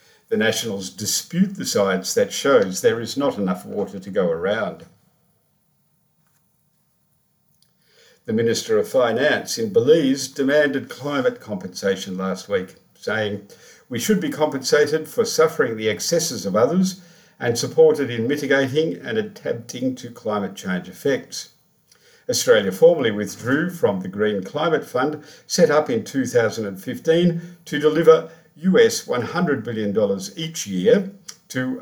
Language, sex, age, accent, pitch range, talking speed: English, male, 50-69, Australian, 120-190 Hz, 125 wpm